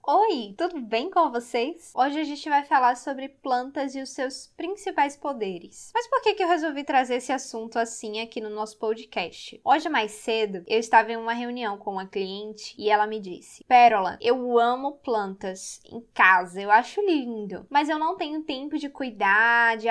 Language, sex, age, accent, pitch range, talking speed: Portuguese, female, 10-29, Brazilian, 220-290 Hz, 190 wpm